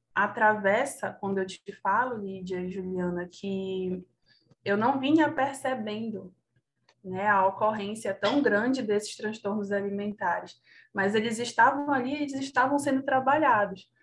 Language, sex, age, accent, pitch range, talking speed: Portuguese, female, 20-39, Brazilian, 200-250 Hz, 125 wpm